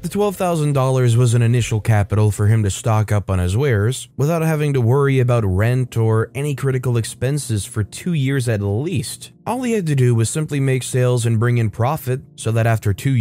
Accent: American